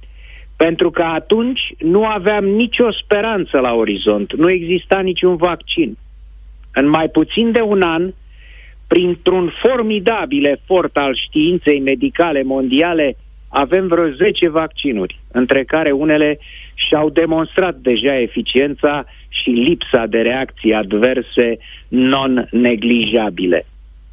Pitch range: 120-180 Hz